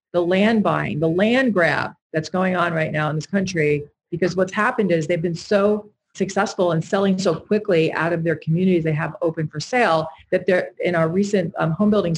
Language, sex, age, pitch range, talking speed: English, female, 40-59, 165-205 Hz, 210 wpm